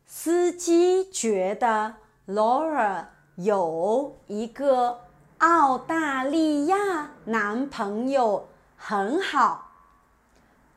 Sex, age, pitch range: female, 40-59, 205-285 Hz